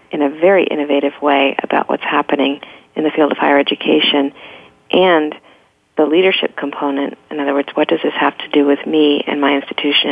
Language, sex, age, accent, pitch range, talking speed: English, female, 50-69, American, 145-160 Hz, 190 wpm